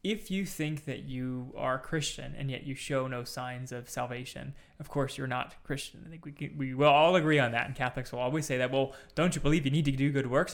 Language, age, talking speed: English, 20-39, 260 wpm